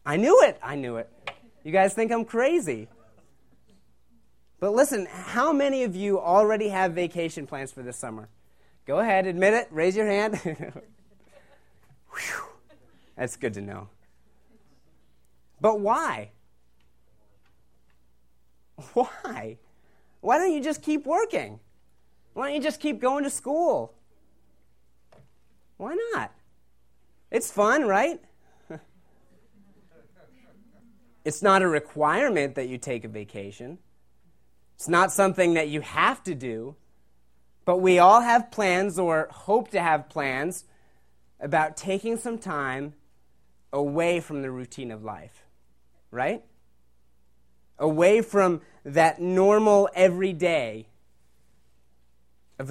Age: 30-49